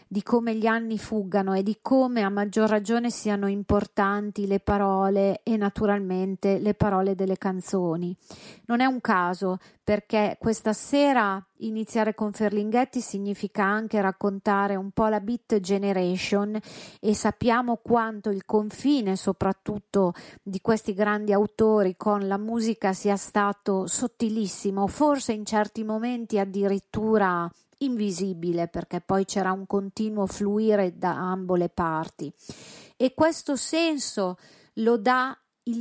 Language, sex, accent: Italian, female, native